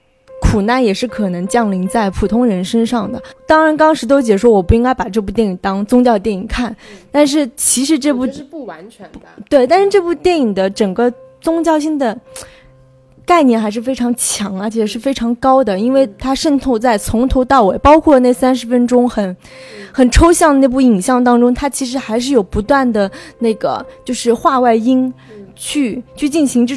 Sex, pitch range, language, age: female, 220-275 Hz, Chinese, 20-39